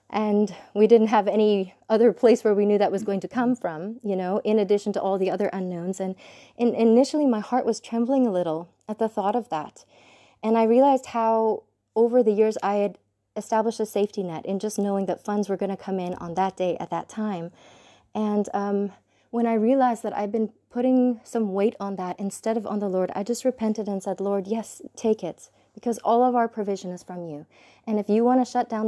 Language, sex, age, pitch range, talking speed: English, female, 30-49, 195-230 Hz, 225 wpm